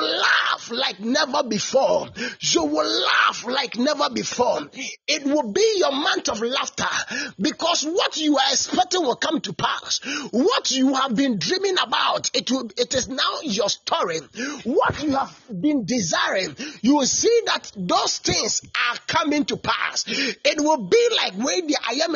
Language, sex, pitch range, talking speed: English, male, 240-315 Hz, 170 wpm